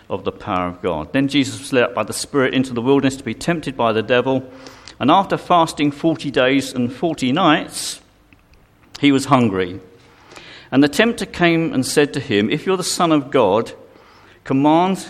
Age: 50-69